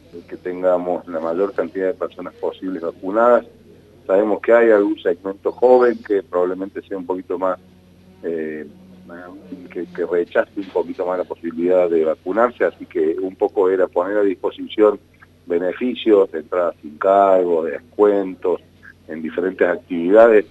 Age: 40-59